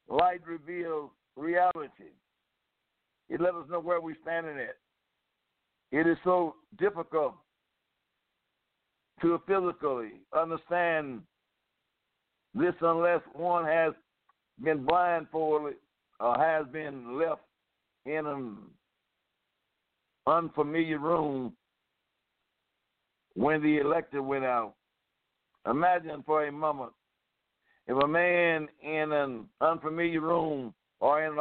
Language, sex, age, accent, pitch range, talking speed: English, male, 60-79, American, 155-180 Hz, 95 wpm